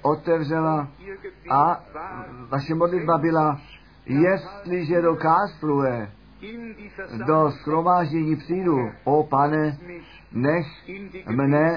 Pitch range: 150-185 Hz